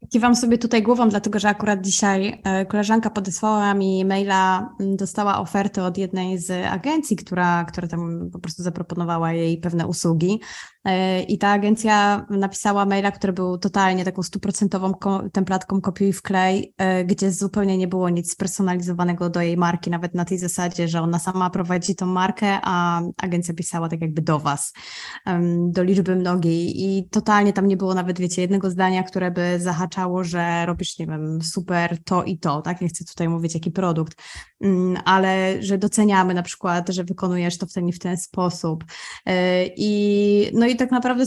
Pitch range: 180-215 Hz